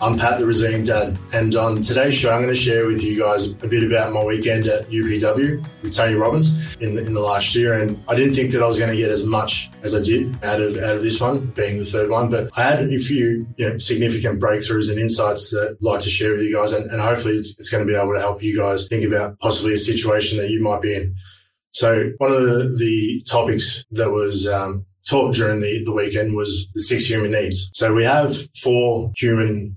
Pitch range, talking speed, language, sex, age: 105-120 Hz, 250 wpm, English, male, 20-39